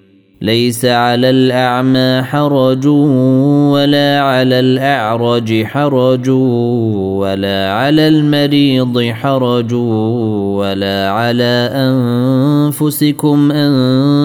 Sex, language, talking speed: male, Arabic, 65 wpm